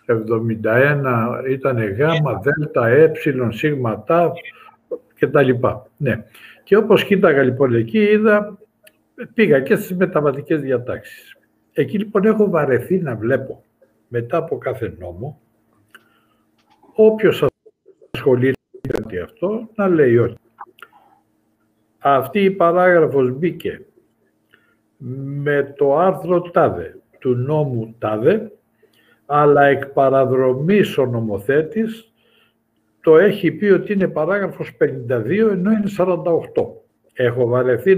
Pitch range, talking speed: 125-185 Hz, 105 wpm